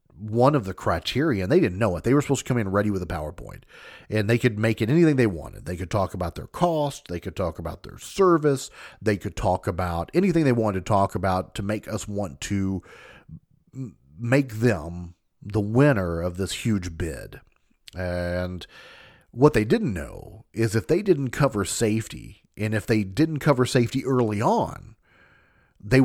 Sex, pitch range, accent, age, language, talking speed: male, 95-125 Hz, American, 40-59, English, 190 wpm